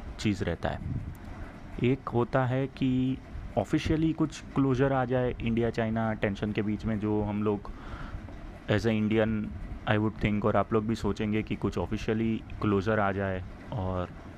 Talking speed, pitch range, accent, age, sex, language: 165 wpm, 100-130 Hz, native, 30-49, male, Hindi